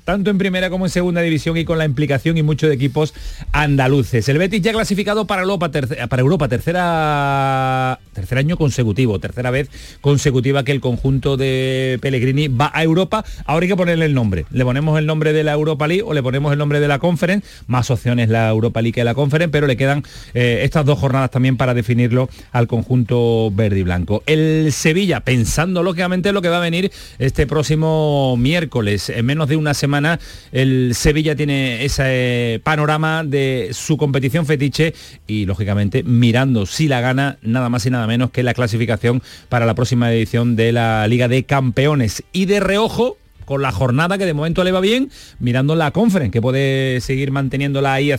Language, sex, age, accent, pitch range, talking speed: Spanish, male, 40-59, Spanish, 125-160 Hz, 190 wpm